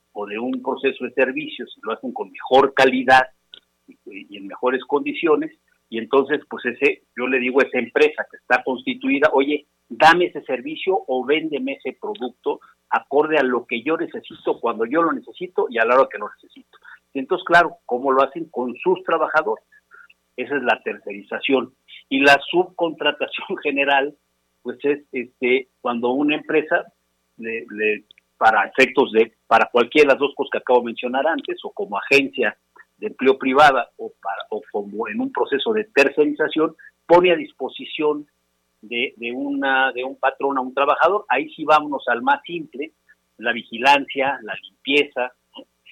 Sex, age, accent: male, 50-69, Mexican